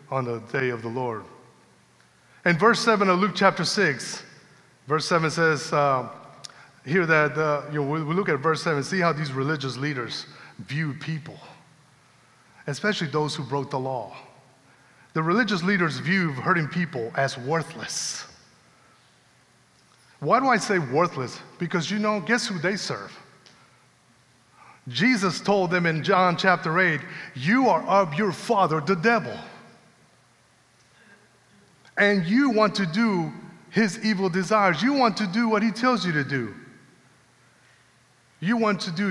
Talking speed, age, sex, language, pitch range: 150 wpm, 30-49, male, English, 140-200 Hz